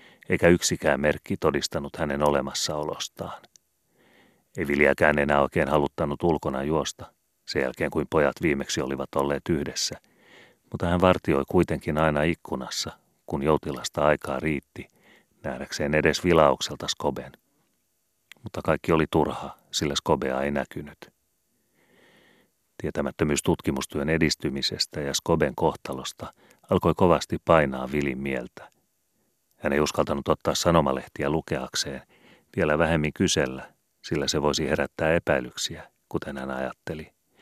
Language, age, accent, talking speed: Finnish, 40-59, native, 115 wpm